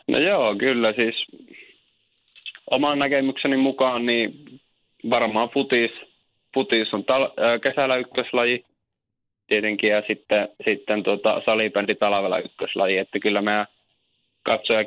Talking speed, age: 100 wpm, 20-39